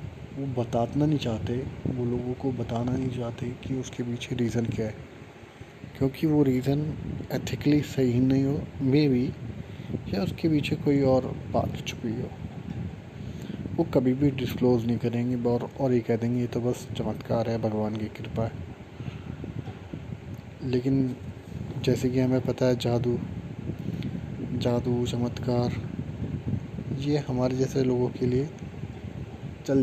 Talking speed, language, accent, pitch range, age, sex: 135 wpm, Hindi, native, 115-130 Hz, 20-39, male